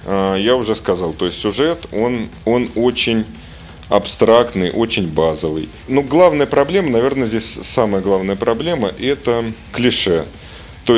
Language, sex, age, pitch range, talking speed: Russian, male, 30-49, 95-120 Hz, 125 wpm